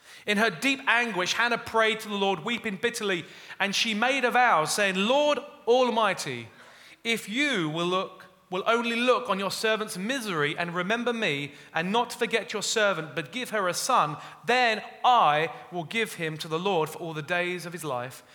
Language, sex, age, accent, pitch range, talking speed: English, male, 30-49, British, 155-230 Hz, 185 wpm